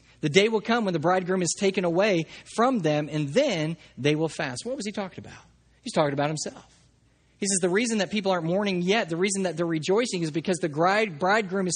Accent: American